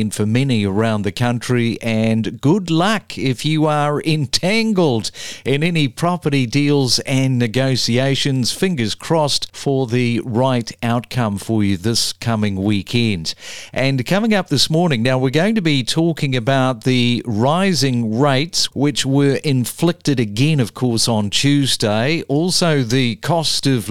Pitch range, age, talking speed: 120-150 Hz, 50-69, 140 wpm